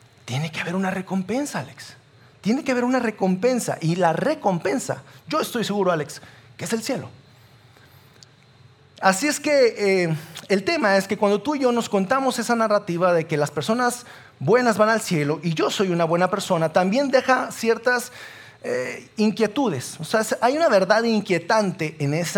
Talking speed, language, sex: 170 wpm, Spanish, male